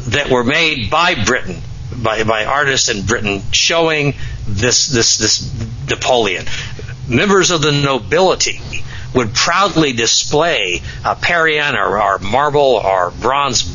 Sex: male